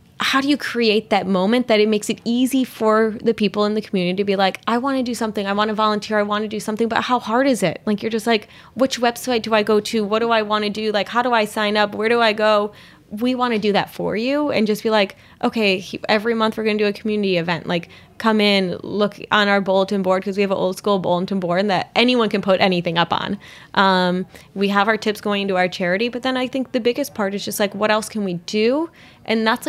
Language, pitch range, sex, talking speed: English, 190-220 Hz, female, 275 wpm